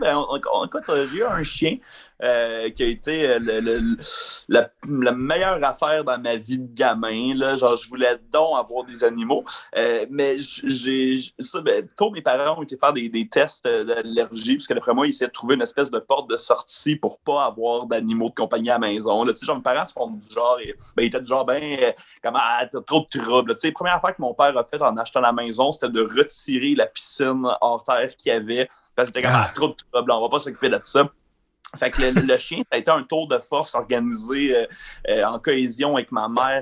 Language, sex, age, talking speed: French, male, 30-49, 250 wpm